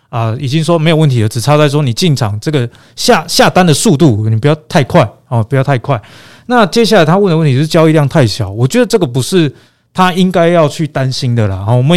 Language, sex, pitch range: Chinese, male, 120-165 Hz